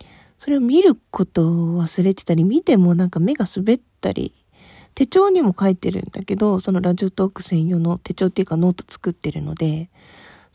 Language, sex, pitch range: Japanese, female, 180-225 Hz